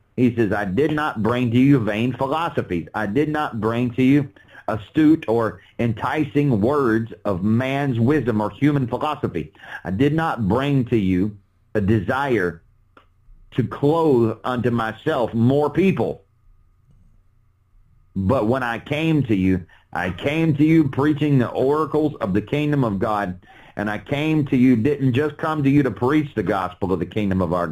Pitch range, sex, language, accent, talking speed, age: 105-140 Hz, male, English, American, 165 wpm, 40-59